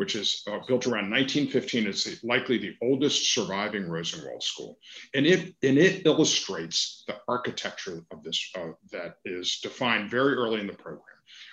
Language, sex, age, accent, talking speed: English, male, 50-69, American, 155 wpm